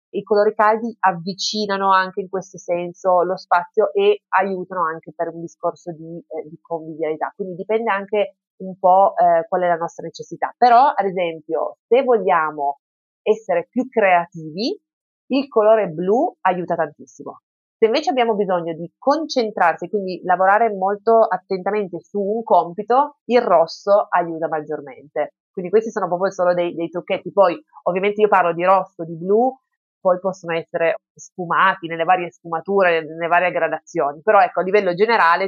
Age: 30-49